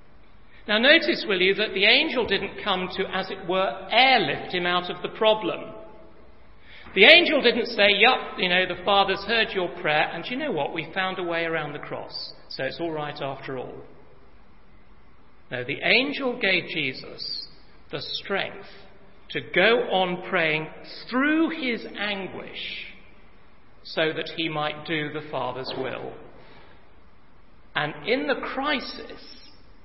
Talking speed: 150 wpm